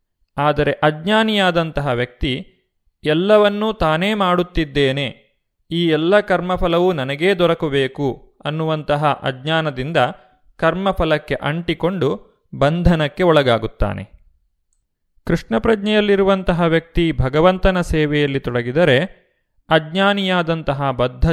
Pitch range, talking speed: 135-170 Hz, 70 wpm